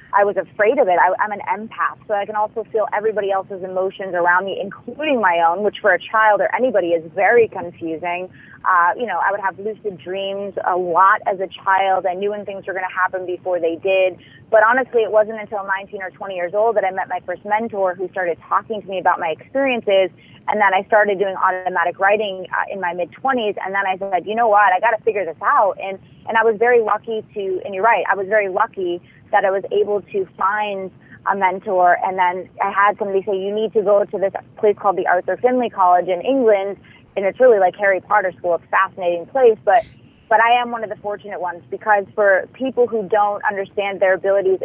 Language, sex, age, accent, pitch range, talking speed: English, female, 30-49, American, 185-215 Hz, 230 wpm